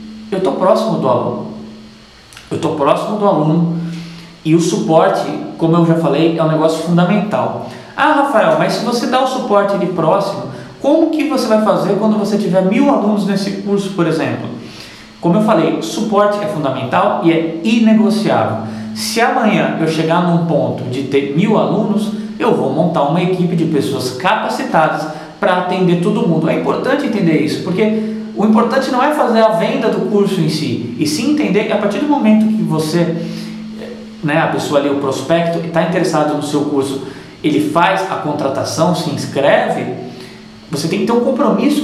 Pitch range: 165-215 Hz